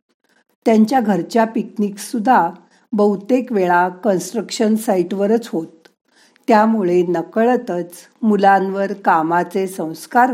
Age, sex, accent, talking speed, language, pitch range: 50-69, female, native, 75 wpm, Marathi, 170-225 Hz